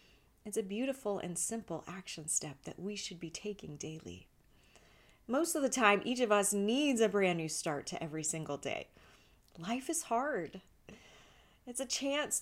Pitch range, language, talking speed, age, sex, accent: 185-240 Hz, English, 170 wpm, 30-49, female, American